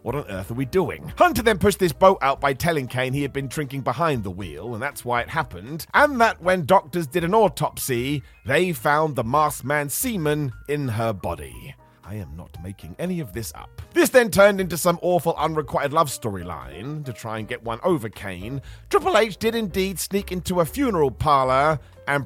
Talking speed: 210 wpm